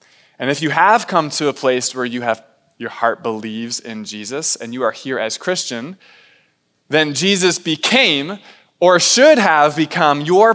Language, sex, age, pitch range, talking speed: English, male, 20-39, 125-165 Hz, 170 wpm